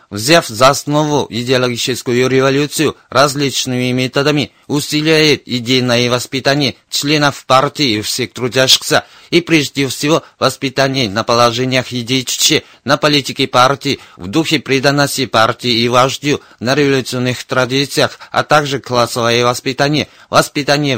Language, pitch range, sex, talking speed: Russian, 125-150 Hz, male, 110 wpm